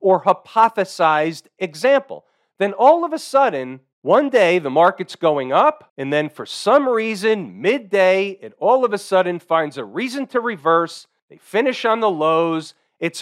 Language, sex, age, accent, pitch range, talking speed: English, male, 40-59, American, 175-220 Hz, 165 wpm